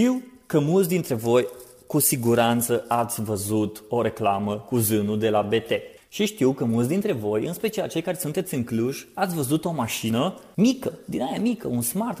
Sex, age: male, 30-49